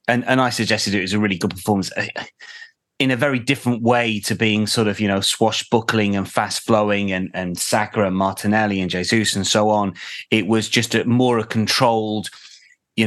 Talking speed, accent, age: 195 wpm, British, 30-49